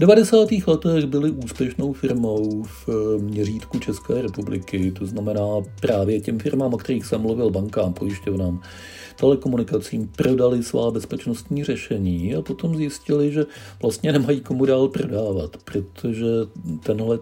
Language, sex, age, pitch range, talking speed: Czech, male, 50-69, 100-130 Hz, 130 wpm